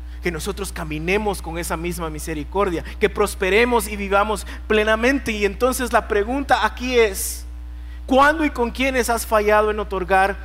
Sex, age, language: male, 40-59, Spanish